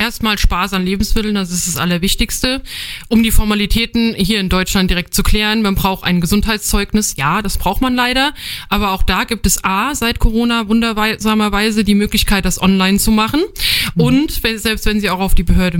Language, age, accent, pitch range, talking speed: German, 20-39, German, 185-225 Hz, 185 wpm